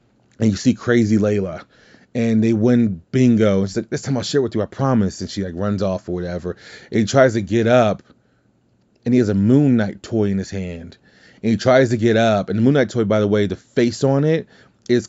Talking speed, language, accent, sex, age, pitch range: 245 wpm, English, American, male, 30-49, 95-120 Hz